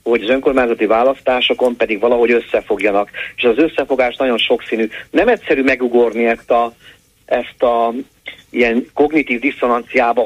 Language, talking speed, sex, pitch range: Hungarian, 115 wpm, male, 115-150 Hz